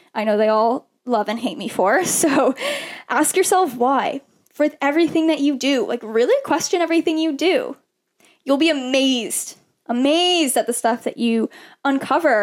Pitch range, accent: 245-315 Hz, American